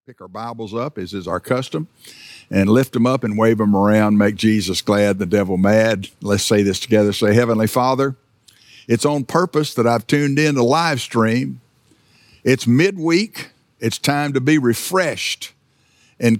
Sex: male